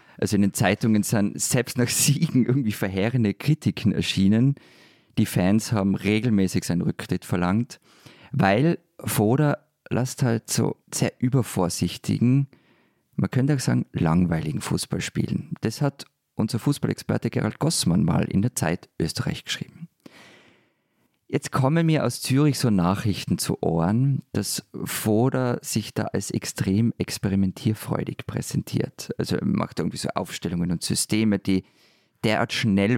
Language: German